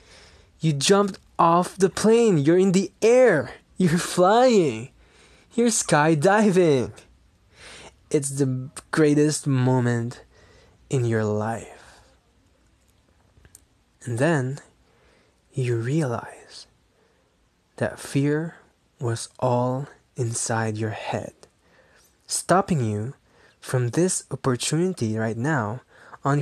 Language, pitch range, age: English, 110-150 Hz, 20-39